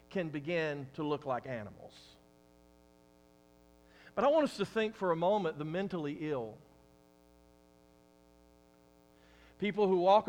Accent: American